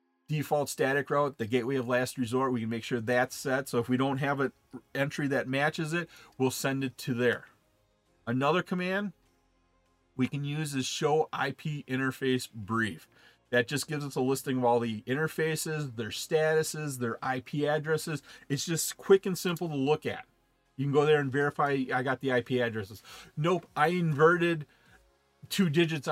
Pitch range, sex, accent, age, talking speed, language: 130-170 Hz, male, American, 40-59, 180 wpm, English